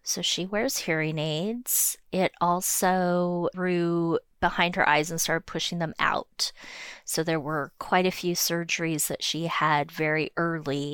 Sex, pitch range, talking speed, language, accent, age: female, 155-185 Hz, 155 wpm, English, American, 30-49